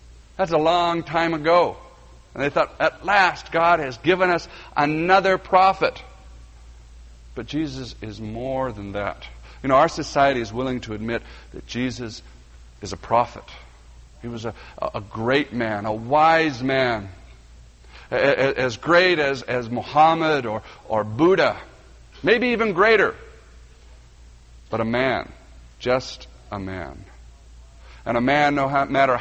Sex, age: male, 50-69